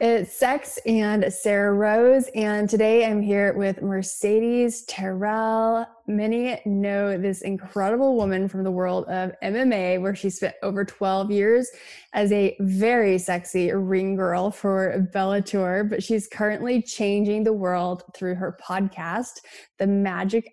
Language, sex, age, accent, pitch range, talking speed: English, female, 10-29, American, 190-220 Hz, 135 wpm